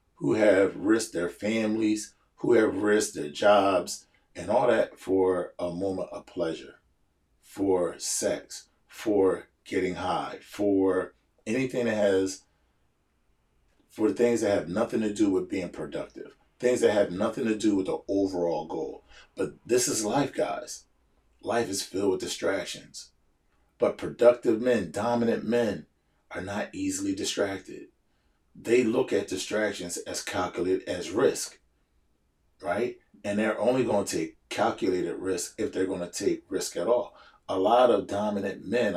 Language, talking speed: English, 150 wpm